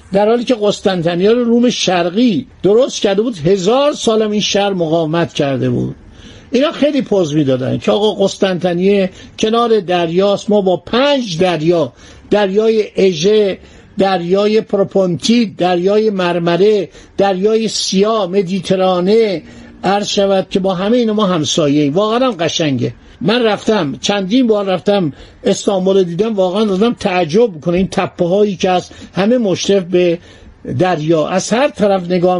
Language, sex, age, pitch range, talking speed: Persian, male, 50-69, 180-225 Hz, 135 wpm